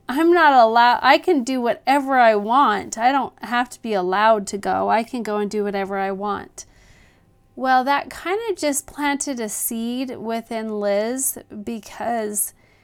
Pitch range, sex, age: 205-240 Hz, female, 30-49